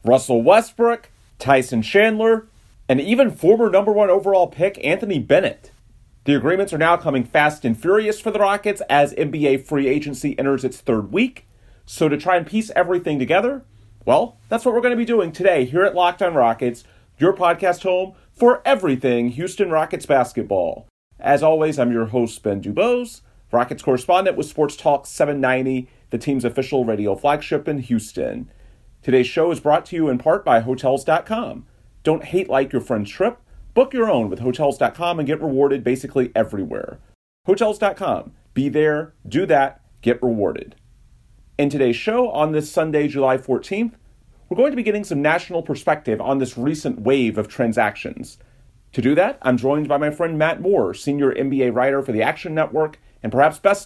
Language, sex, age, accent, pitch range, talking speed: English, male, 30-49, American, 125-180 Hz, 175 wpm